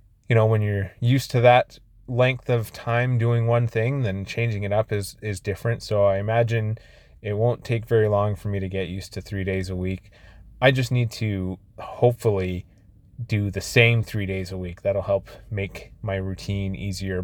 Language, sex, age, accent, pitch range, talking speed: English, male, 20-39, American, 95-115 Hz, 195 wpm